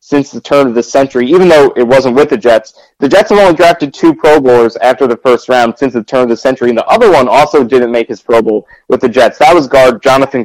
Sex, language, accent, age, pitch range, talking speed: male, English, American, 20-39, 115-135 Hz, 275 wpm